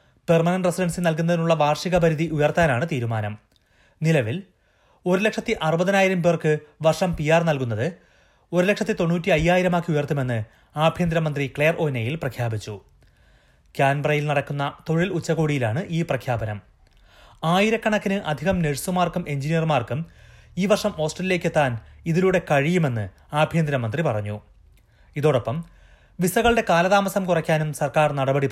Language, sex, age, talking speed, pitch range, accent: Malayalam, male, 30-49, 105 wpm, 130-170 Hz, native